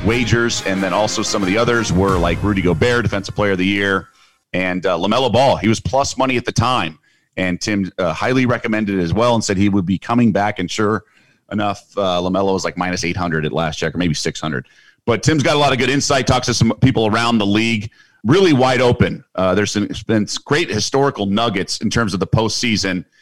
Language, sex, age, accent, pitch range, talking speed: English, male, 40-59, American, 100-125 Hz, 225 wpm